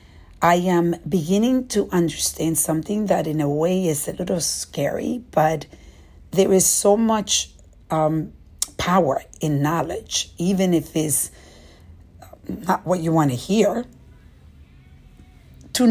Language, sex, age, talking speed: English, female, 50-69, 125 wpm